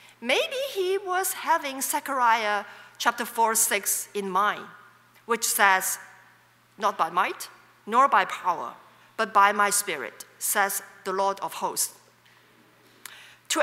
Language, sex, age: English, female, 40-59